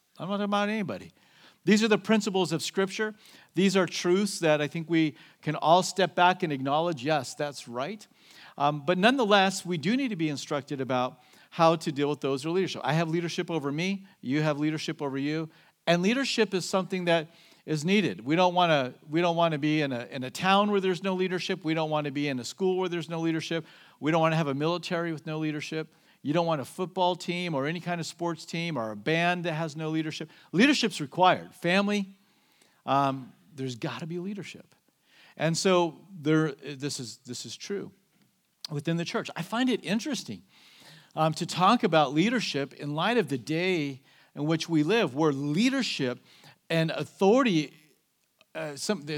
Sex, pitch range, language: male, 150-190 Hz, English